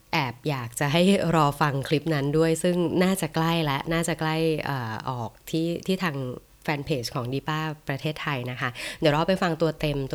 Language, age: Thai, 20-39